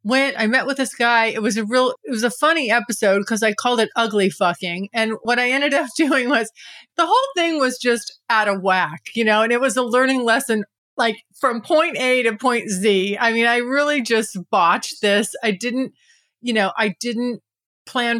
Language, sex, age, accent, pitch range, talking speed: English, female, 30-49, American, 210-260 Hz, 215 wpm